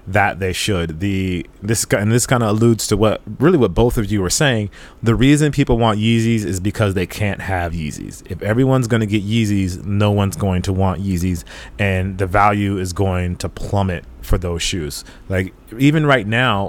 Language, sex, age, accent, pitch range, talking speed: English, male, 30-49, American, 95-110 Hz, 205 wpm